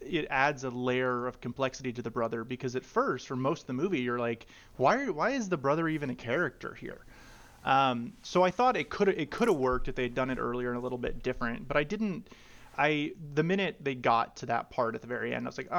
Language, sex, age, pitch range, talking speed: English, male, 30-49, 120-145 Hz, 260 wpm